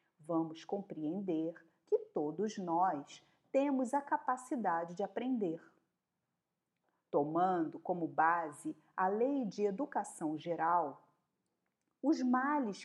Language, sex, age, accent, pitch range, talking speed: Portuguese, female, 40-59, Brazilian, 180-295 Hz, 95 wpm